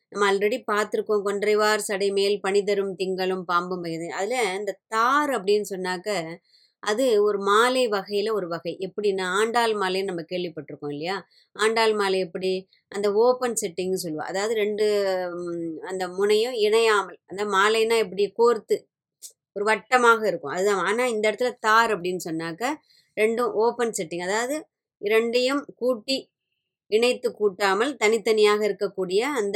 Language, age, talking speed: Tamil, 20-39, 130 wpm